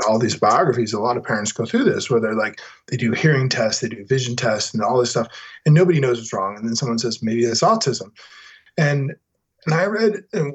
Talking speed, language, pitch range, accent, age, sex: 240 wpm, English, 115-165 Hz, American, 20-39, male